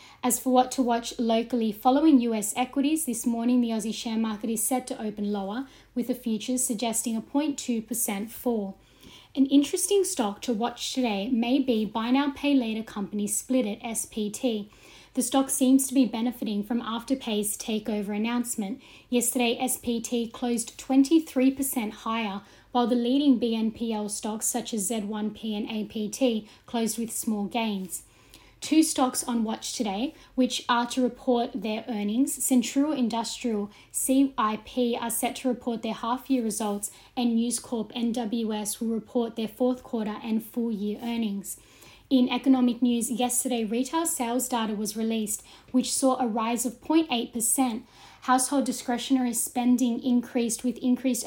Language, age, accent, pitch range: English, 10-29, Australian, 225-255 Hz